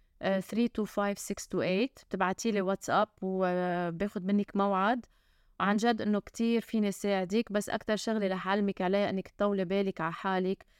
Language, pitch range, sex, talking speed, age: Arabic, 195-220 Hz, female, 150 wpm, 20-39